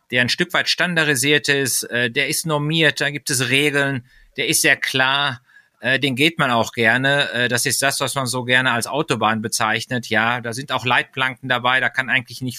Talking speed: 200 wpm